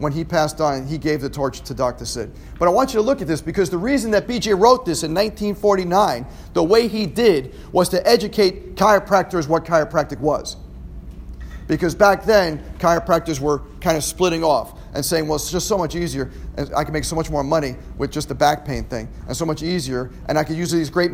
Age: 40-59